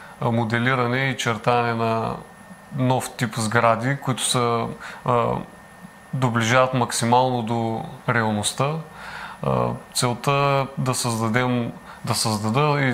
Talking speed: 95 wpm